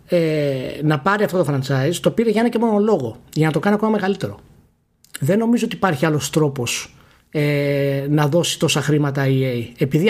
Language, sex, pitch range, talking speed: Greek, male, 140-205 Hz, 185 wpm